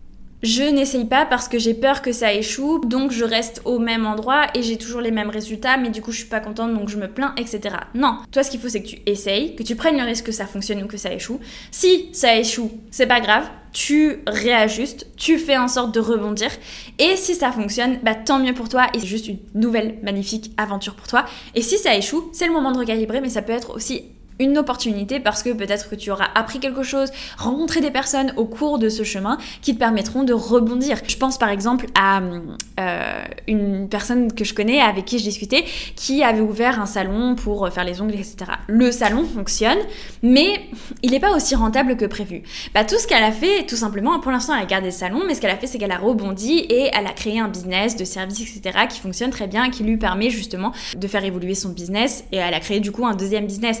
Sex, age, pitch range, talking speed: female, 10-29, 210-255 Hz, 240 wpm